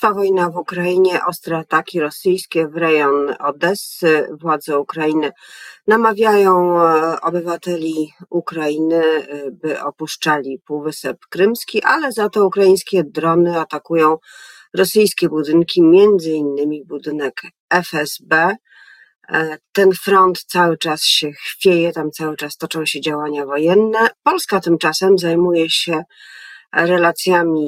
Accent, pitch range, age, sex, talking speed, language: native, 155-185 Hz, 40-59, female, 105 wpm, Polish